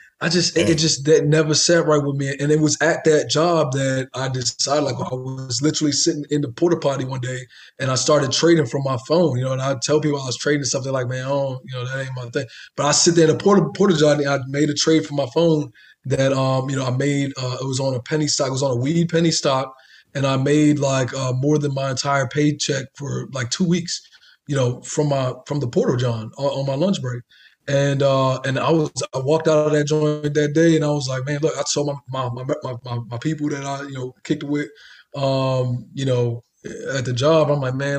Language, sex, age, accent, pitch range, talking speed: English, male, 20-39, American, 130-150 Hz, 260 wpm